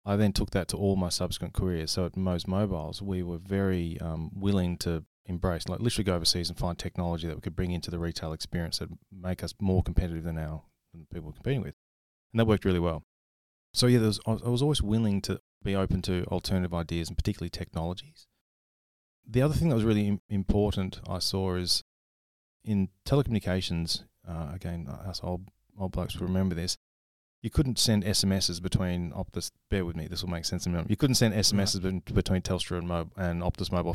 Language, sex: English, male